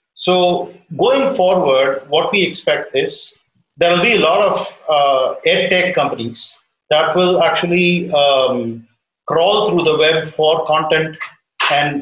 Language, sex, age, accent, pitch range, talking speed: English, male, 40-59, Indian, 135-170 Hz, 140 wpm